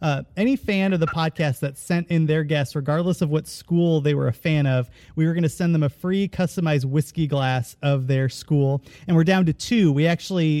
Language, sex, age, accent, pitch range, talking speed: English, male, 30-49, American, 145-185 Hz, 230 wpm